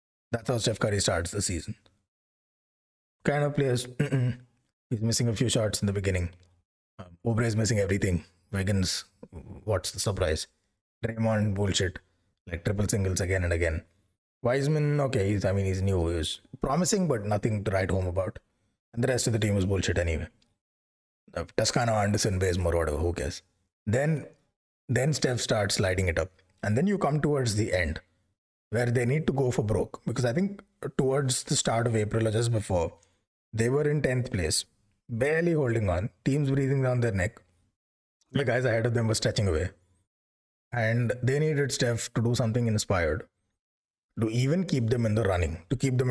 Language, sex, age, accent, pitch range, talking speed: English, male, 20-39, Indian, 95-125 Hz, 175 wpm